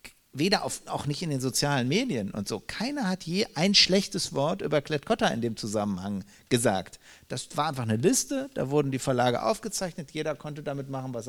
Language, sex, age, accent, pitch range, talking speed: German, male, 50-69, German, 120-155 Hz, 200 wpm